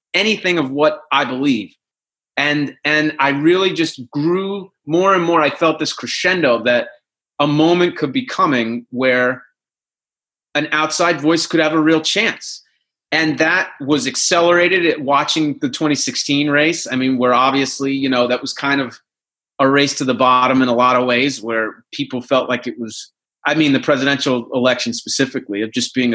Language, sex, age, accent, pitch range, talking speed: English, male, 30-49, American, 130-165 Hz, 175 wpm